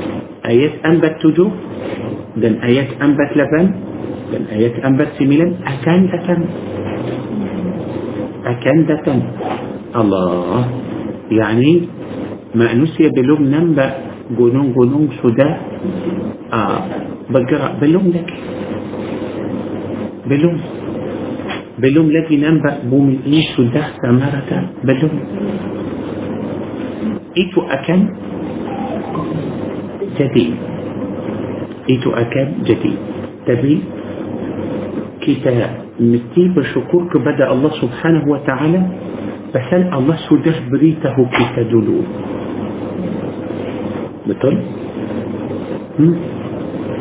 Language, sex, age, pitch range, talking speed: Malay, male, 50-69, 125-160 Hz, 70 wpm